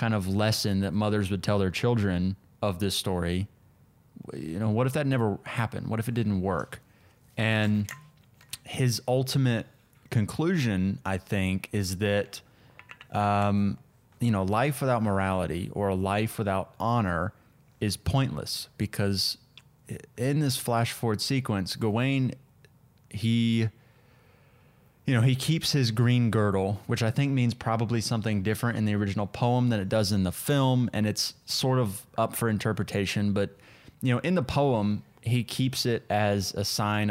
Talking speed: 155 wpm